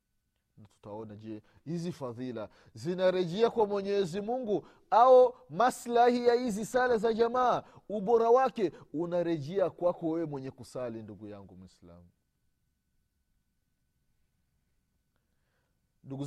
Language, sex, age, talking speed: Swahili, male, 30-49, 95 wpm